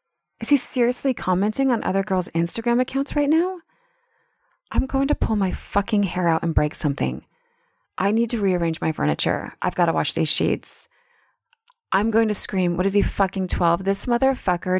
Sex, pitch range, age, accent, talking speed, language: female, 170-245 Hz, 30-49, American, 185 wpm, English